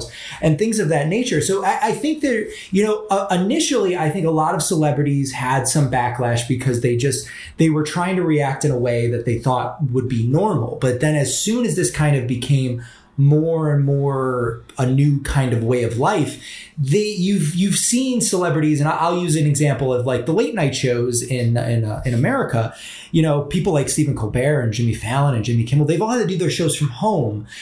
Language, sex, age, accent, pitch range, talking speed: English, male, 30-49, American, 130-170 Hz, 215 wpm